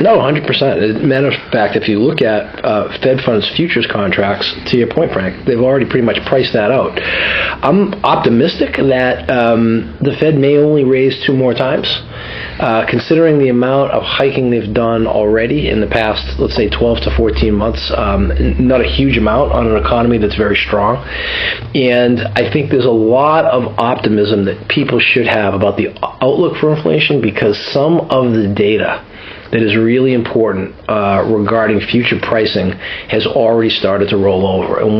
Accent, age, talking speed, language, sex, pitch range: American, 40-59, 180 wpm, English, male, 105-125 Hz